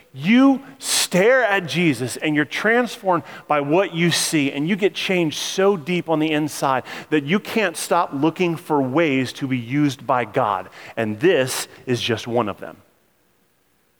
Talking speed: 165 wpm